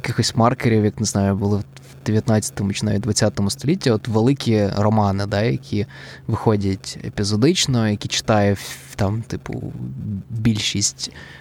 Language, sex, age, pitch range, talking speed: Ukrainian, male, 20-39, 105-120 Hz, 125 wpm